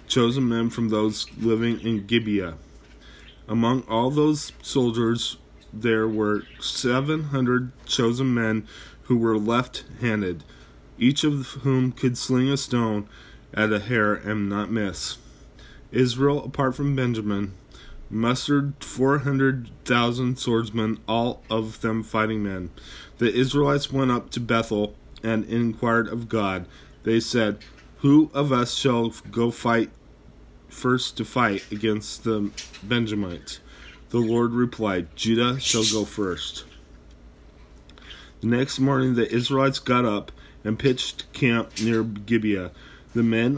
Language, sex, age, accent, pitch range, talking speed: English, male, 20-39, American, 105-125 Hz, 125 wpm